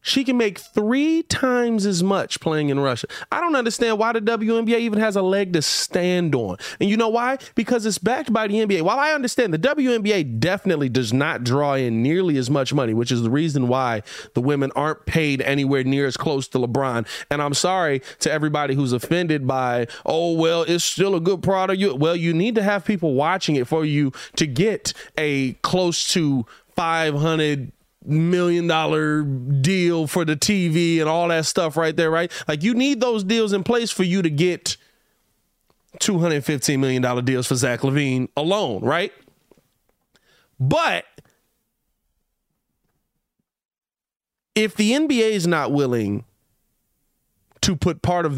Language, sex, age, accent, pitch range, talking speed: English, male, 30-49, American, 140-195 Hz, 170 wpm